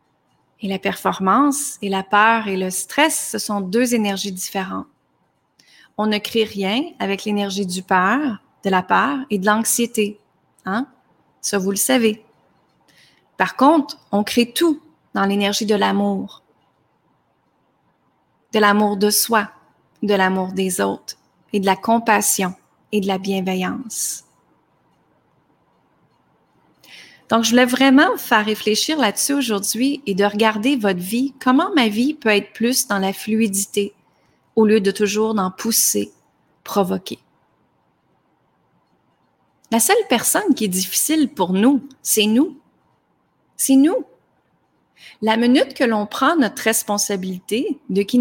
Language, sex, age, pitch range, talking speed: French, female, 30-49, 200-255 Hz, 135 wpm